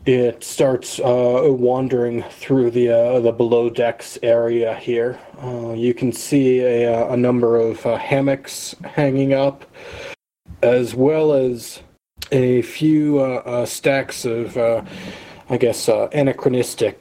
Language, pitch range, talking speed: English, 115-125 Hz, 130 wpm